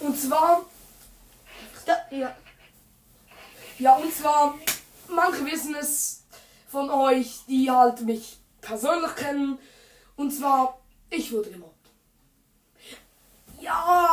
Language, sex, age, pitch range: German, female, 20-39, 245-285 Hz